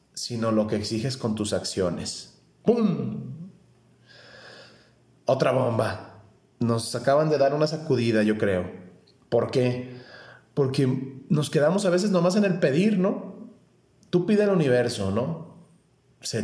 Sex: male